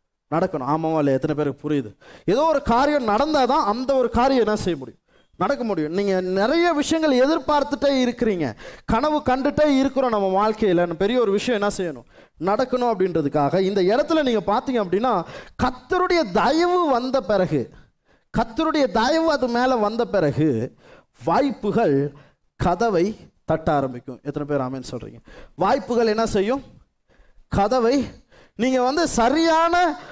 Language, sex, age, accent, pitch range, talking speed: Tamil, male, 20-39, native, 185-270 Hz, 130 wpm